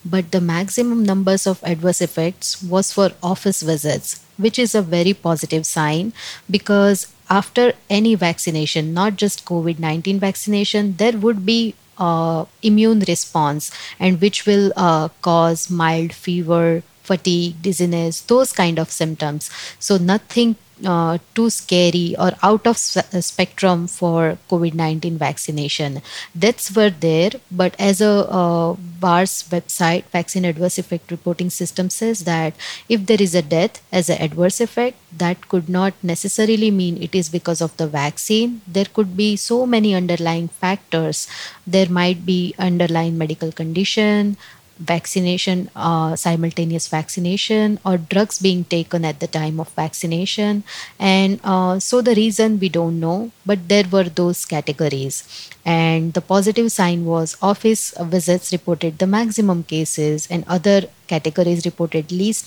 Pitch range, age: 165-200 Hz, 30-49